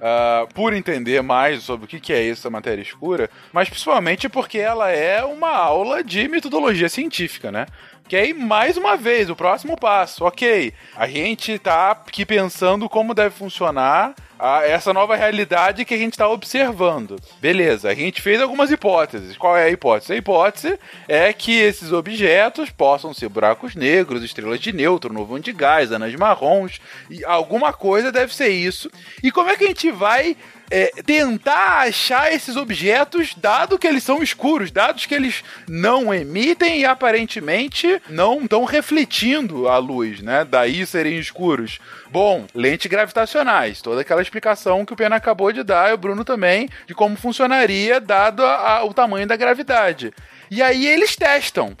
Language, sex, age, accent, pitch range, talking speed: Portuguese, male, 20-39, Brazilian, 180-260 Hz, 165 wpm